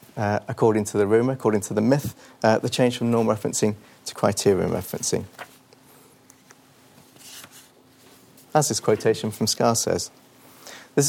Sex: male